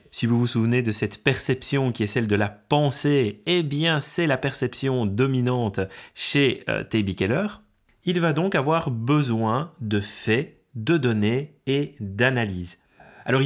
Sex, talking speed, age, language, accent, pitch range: male, 155 wpm, 30-49, French, French, 115-150 Hz